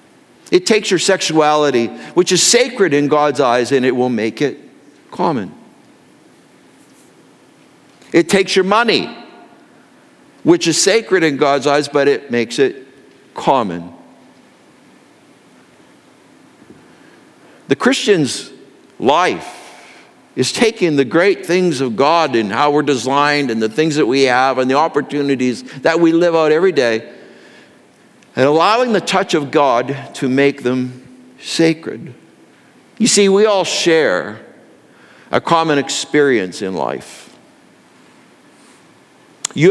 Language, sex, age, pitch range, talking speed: English, male, 60-79, 130-175 Hz, 120 wpm